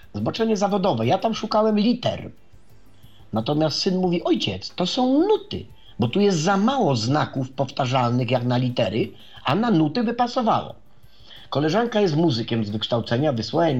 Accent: native